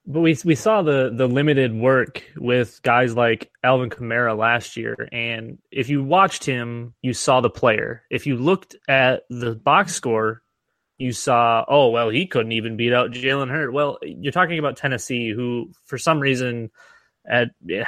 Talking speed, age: 175 wpm, 20-39